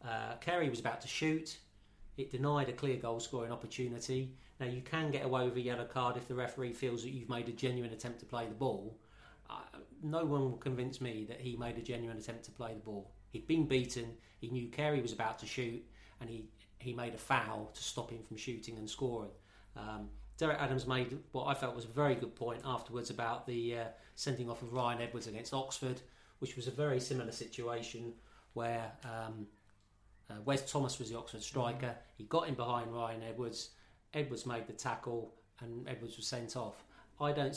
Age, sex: 40-59, male